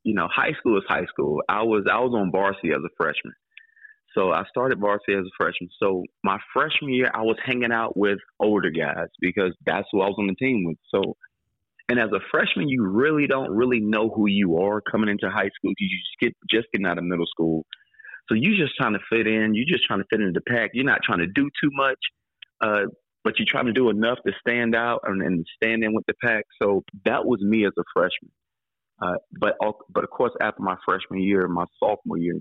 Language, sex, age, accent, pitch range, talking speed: English, male, 30-49, American, 90-115 Hz, 235 wpm